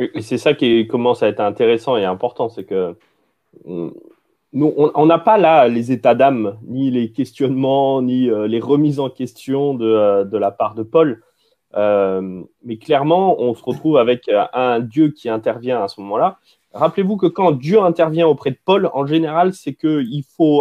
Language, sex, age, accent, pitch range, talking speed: French, male, 30-49, French, 125-175 Hz, 180 wpm